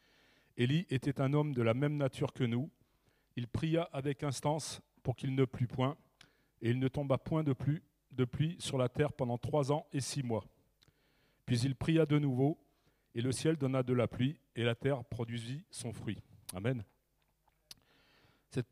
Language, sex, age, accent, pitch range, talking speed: French, male, 40-59, French, 125-150 Hz, 175 wpm